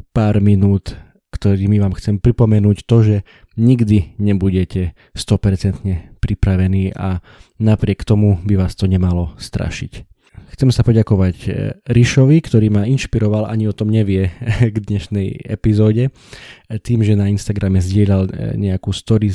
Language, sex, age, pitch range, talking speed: Slovak, male, 20-39, 95-110 Hz, 125 wpm